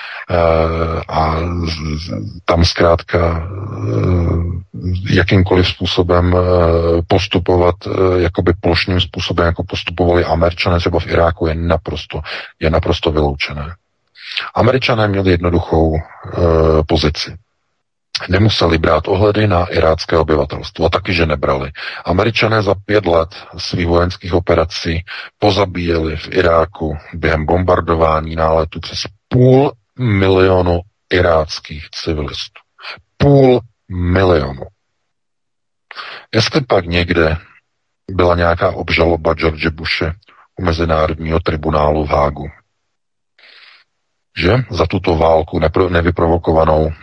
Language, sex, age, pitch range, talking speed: Czech, male, 40-59, 80-95 Hz, 90 wpm